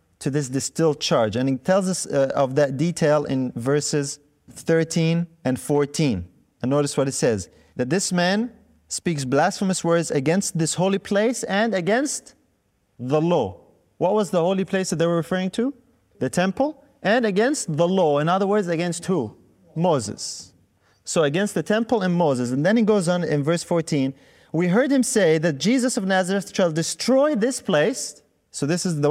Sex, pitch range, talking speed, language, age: male, 150-210 Hz, 180 wpm, English, 30-49